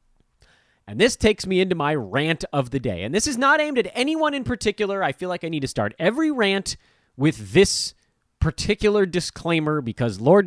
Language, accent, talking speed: English, American, 195 wpm